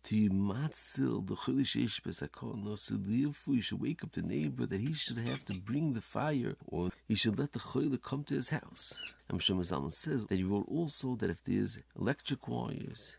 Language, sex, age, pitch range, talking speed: English, male, 50-69, 95-135 Hz, 165 wpm